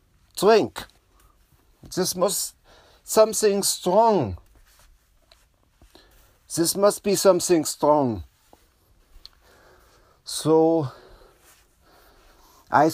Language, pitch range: English, 110-185 Hz